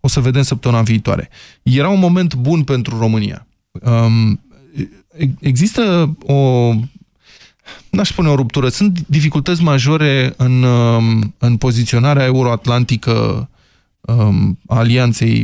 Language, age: Romanian, 20-39